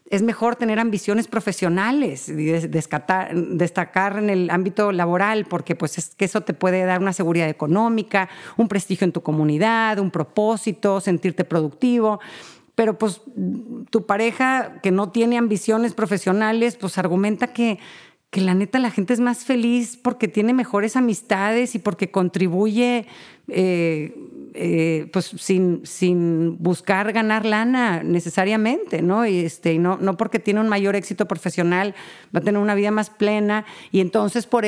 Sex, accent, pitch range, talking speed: female, Mexican, 185-225 Hz, 155 wpm